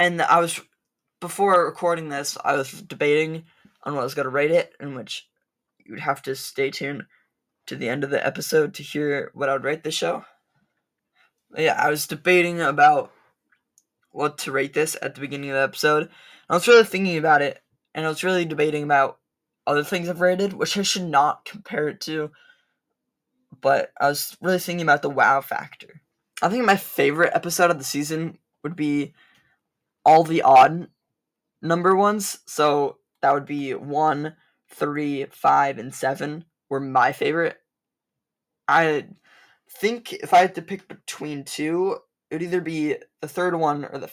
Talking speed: 180 wpm